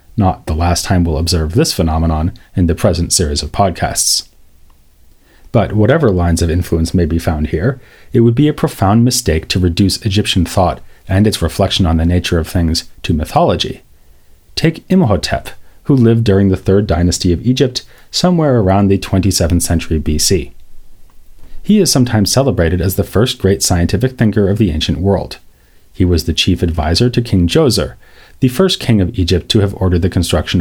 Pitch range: 85-115 Hz